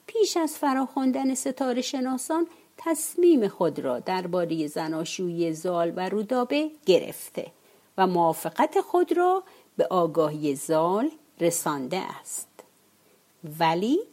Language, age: Persian, 50-69